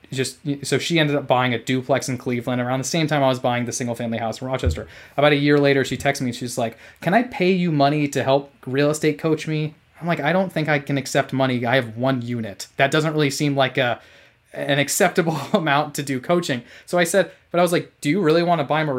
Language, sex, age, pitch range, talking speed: English, male, 20-39, 125-155 Hz, 260 wpm